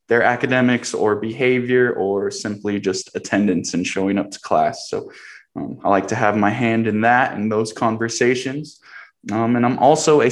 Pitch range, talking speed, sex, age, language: 105-135 Hz, 180 wpm, male, 20-39, English